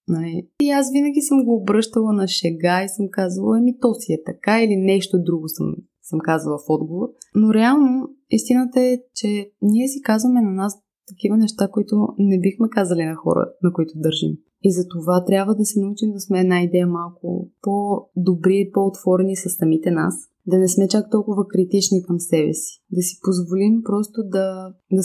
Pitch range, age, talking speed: 175-215 Hz, 20-39, 185 wpm